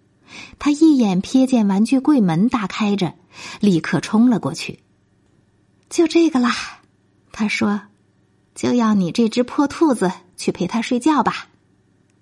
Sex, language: female, Chinese